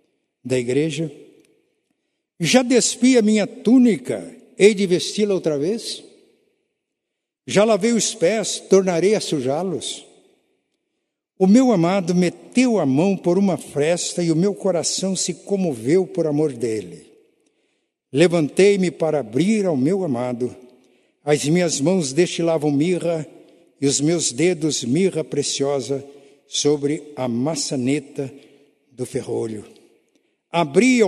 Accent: Brazilian